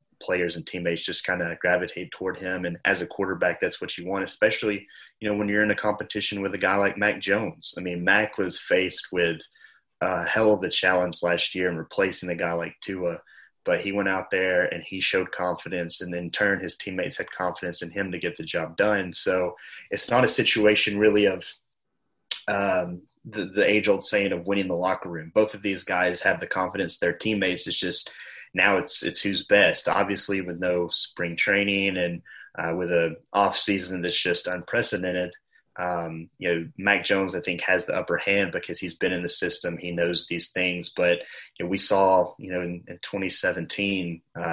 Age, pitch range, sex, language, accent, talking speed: 30-49, 85-100 Hz, male, English, American, 200 wpm